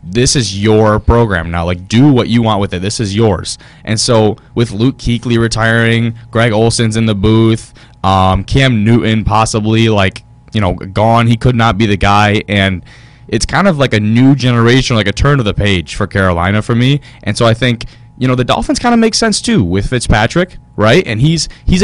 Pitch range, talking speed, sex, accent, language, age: 100-125 Hz, 210 wpm, male, American, English, 10-29